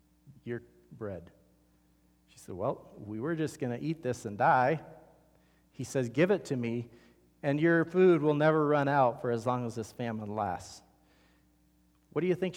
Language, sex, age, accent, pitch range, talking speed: English, male, 40-59, American, 120-165 Hz, 175 wpm